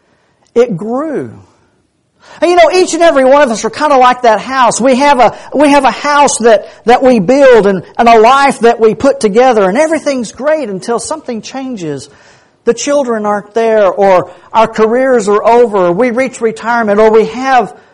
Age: 50-69